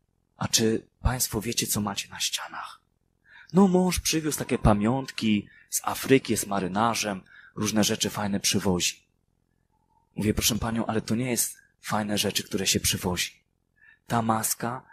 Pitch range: 105-140 Hz